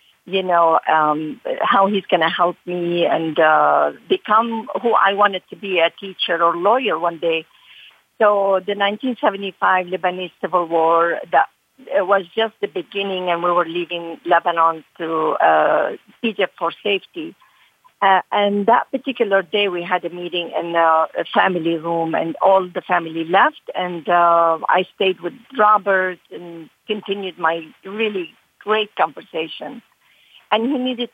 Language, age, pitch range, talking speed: English, 50-69, 175-215 Hz, 150 wpm